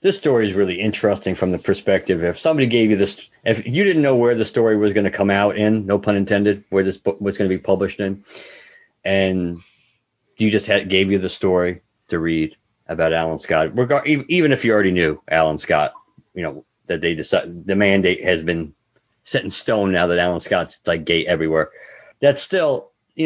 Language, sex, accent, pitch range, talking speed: English, male, American, 95-120 Hz, 205 wpm